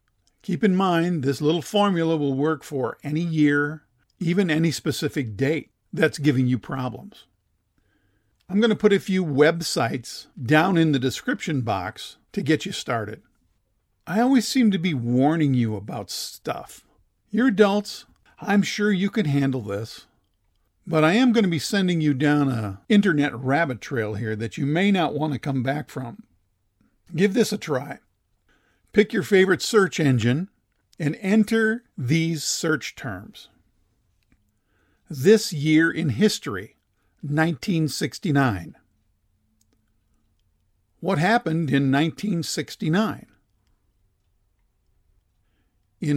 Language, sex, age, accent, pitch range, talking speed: English, male, 50-69, American, 110-185 Hz, 125 wpm